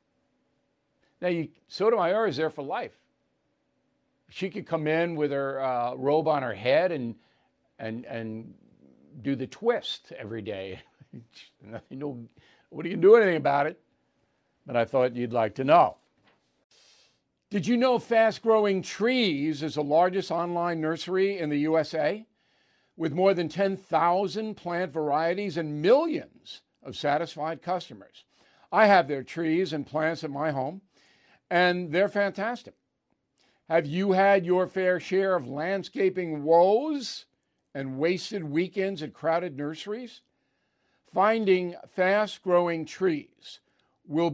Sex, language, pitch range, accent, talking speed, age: male, English, 150-195 Hz, American, 135 wpm, 60-79